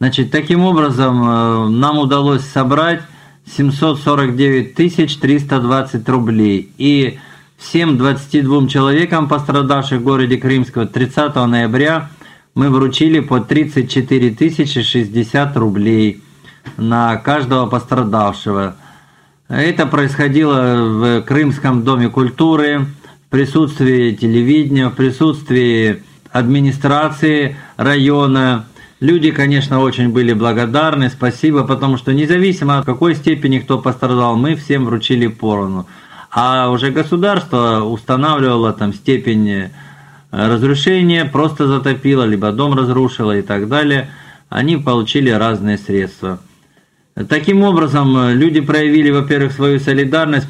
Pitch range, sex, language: 120-145 Hz, male, Russian